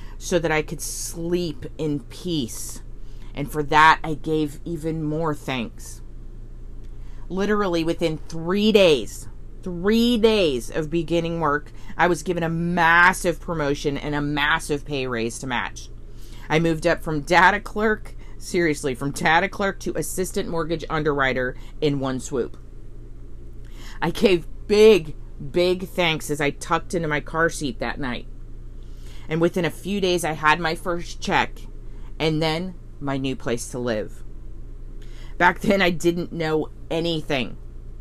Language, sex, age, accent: English, female, 40-59, American